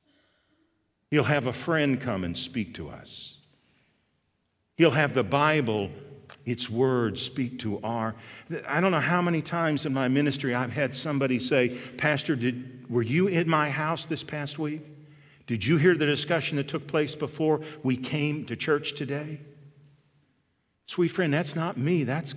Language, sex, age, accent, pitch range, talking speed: English, male, 50-69, American, 130-175 Hz, 165 wpm